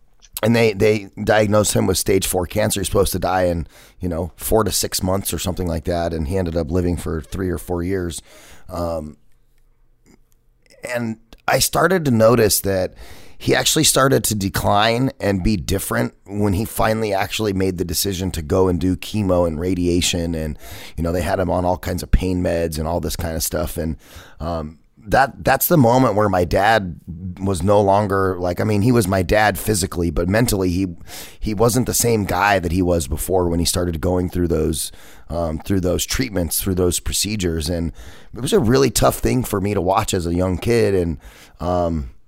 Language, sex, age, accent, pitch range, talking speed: English, male, 30-49, American, 85-100 Hz, 205 wpm